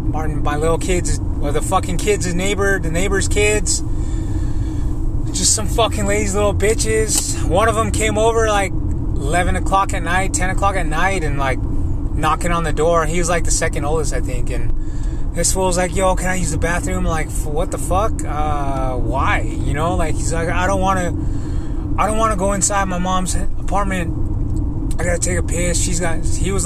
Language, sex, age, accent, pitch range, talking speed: English, male, 20-39, American, 95-105 Hz, 205 wpm